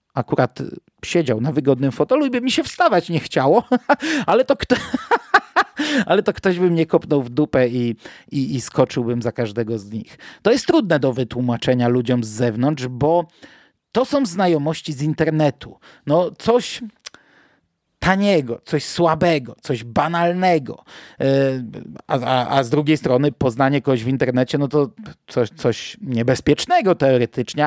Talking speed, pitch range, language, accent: 145 wpm, 135-195 Hz, Polish, native